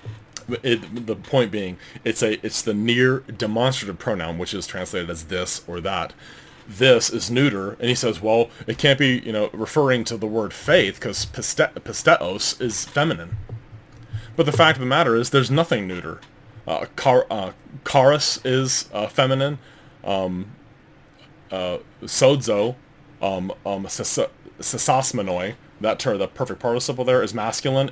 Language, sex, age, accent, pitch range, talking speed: English, male, 30-49, American, 105-135 Hz, 160 wpm